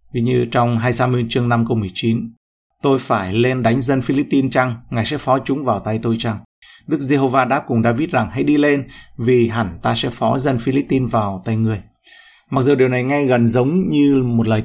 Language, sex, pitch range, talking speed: Vietnamese, male, 115-135 Hz, 210 wpm